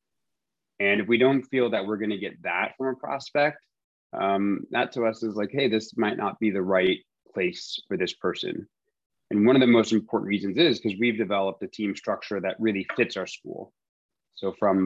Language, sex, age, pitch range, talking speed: English, male, 30-49, 95-115 Hz, 205 wpm